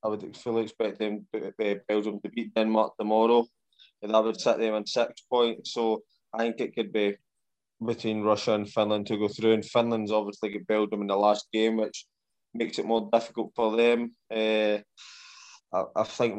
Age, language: 20-39, English